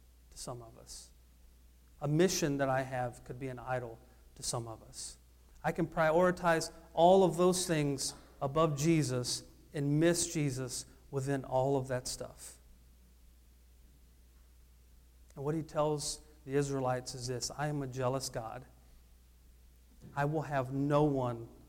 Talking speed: 145 wpm